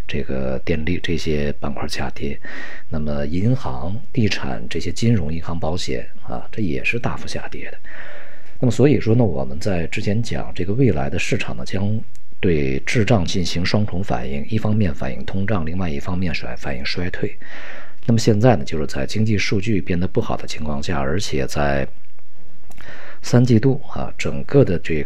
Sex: male